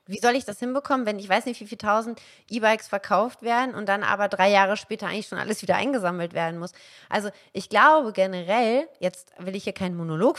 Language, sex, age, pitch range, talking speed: German, female, 30-49, 195-260 Hz, 220 wpm